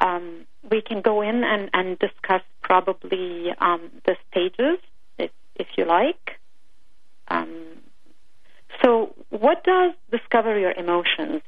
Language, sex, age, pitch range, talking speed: English, female, 40-59, 175-230 Hz, 120 wpm